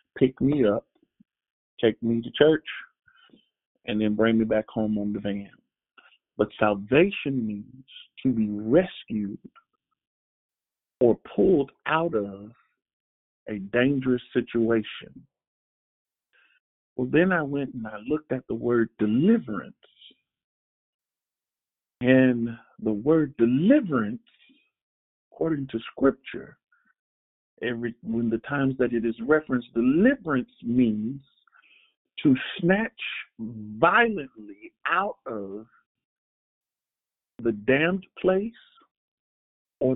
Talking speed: 100 wpm